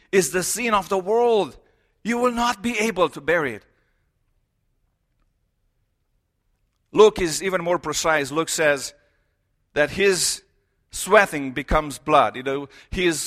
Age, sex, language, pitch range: 50-69, male, English, 155-210 Hz